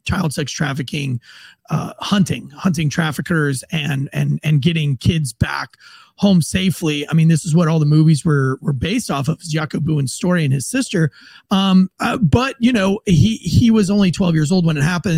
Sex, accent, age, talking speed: male, American, 30-49, 200 wpm